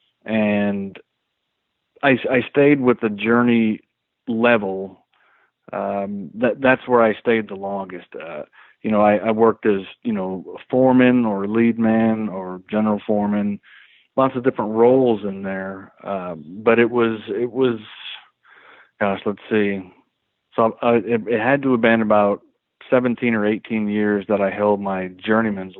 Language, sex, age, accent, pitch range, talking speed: English, male, 40-59, American, 100-115 Hz, 155 wpm